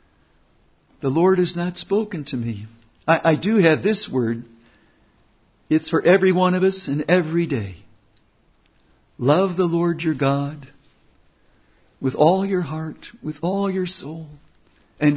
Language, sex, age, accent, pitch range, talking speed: English, male, 60-79, American, 125-165 Hz, 140 wpm